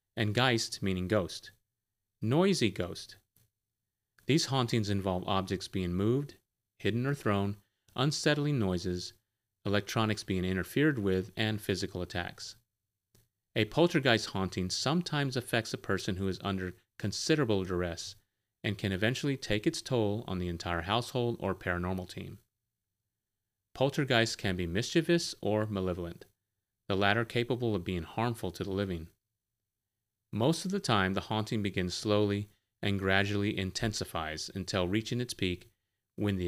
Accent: American